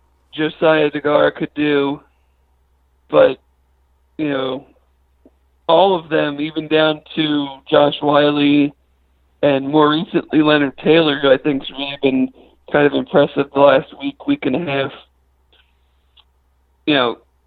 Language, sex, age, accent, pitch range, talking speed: English, male, 50-69, American, 125-155 Hz, 130 wpm